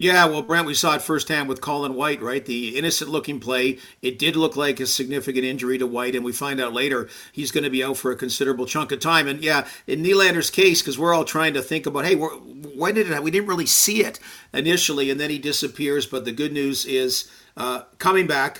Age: 50-69